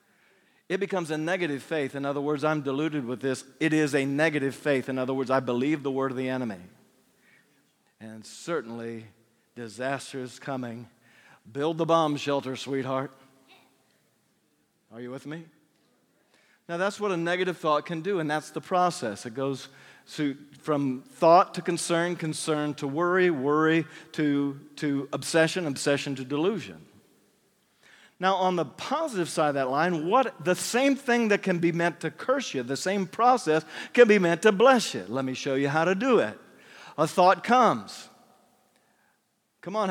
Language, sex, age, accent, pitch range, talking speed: English, male, 50-69, American, 140-185 Hz, 165 wpm